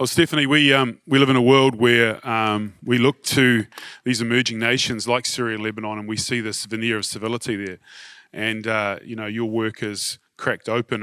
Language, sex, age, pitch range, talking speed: English, male, 30-49, 105-120 Hz, 205 wpm